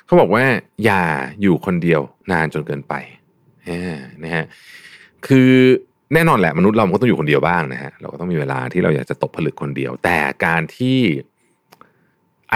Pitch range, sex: 85-125 Hz, male